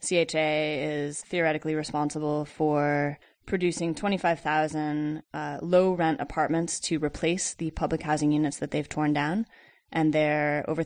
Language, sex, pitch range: English, female, 150-170 Hz